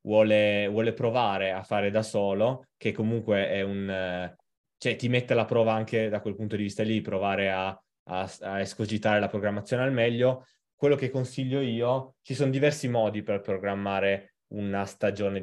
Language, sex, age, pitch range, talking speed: Italian, male, 20-39, 100-120 Hz, 175 wpm